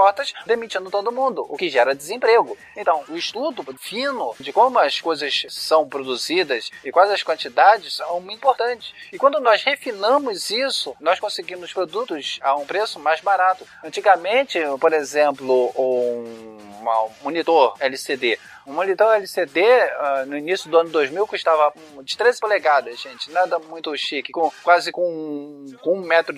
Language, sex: Portuguese, male